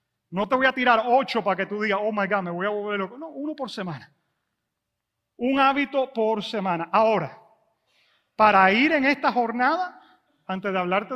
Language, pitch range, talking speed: English, 195-255 Hz, 190 wpm